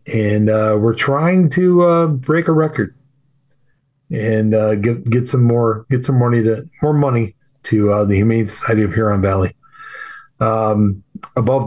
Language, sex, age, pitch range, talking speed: English, male, 40-59, 110-140 Hz, 165 wpm